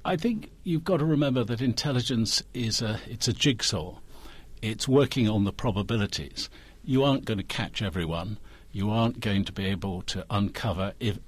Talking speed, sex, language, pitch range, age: 175 wpm, male, English, 90-120 Hz, 60-79